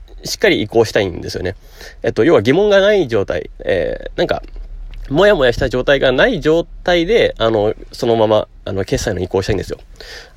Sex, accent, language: male, native, Japanese